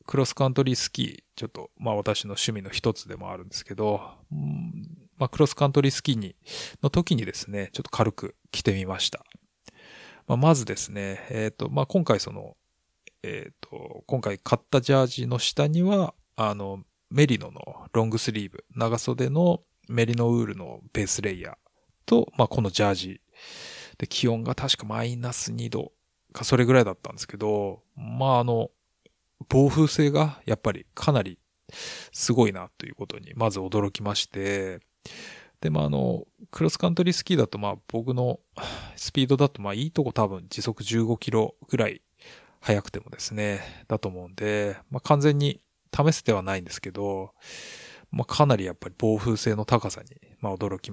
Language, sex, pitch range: Japanese, male, 100-135 Hz